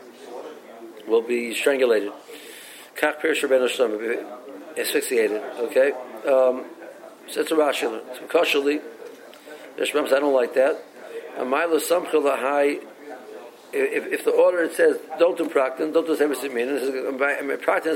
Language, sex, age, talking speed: English, male, 60-79, 85 wpm